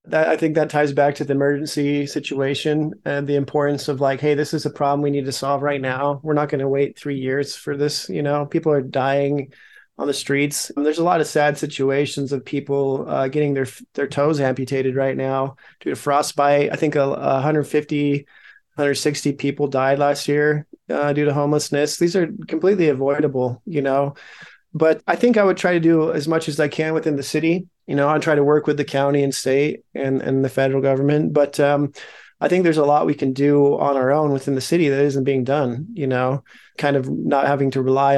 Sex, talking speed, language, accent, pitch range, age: male, 225 wpm, English, American, 140-150 Hz, 30-49